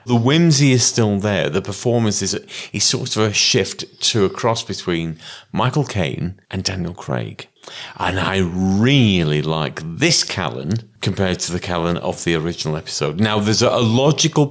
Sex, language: male, English